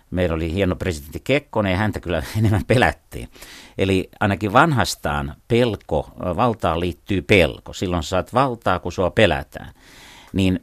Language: Finnish